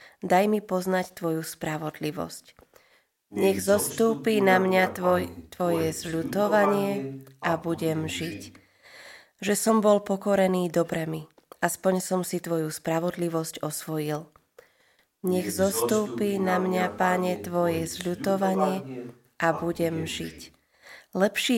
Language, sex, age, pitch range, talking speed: Slovak, female, 20-39, 160-195 Hz, 105 wpm